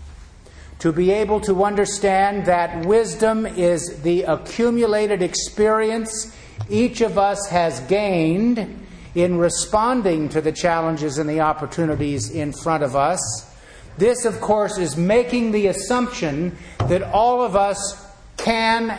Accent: American